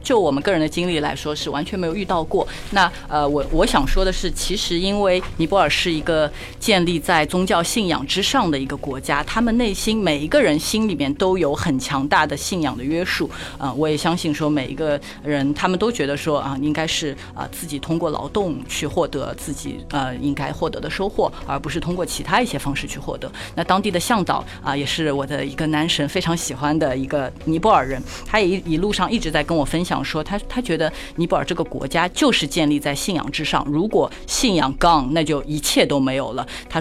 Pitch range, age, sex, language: 145-175 Hz, 30-49, female, Chinese